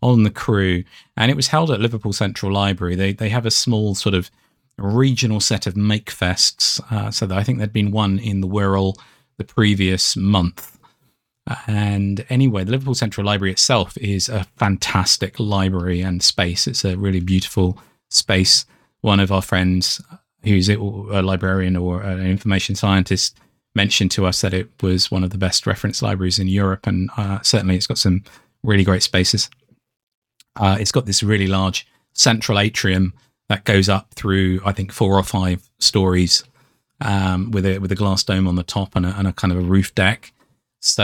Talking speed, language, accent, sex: 185 wpm, English, British, male